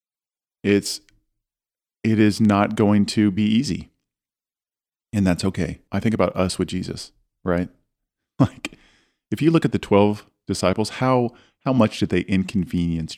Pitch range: 95-115 Hz